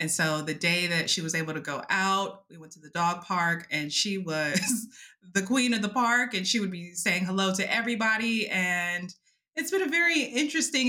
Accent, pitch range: American, 170-230 Hz